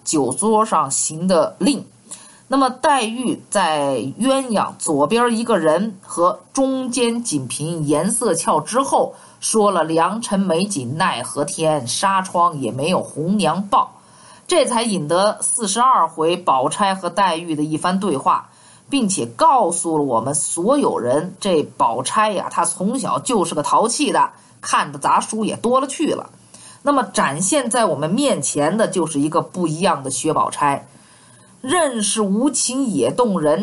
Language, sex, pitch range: Chinese, female, 160-255 Hz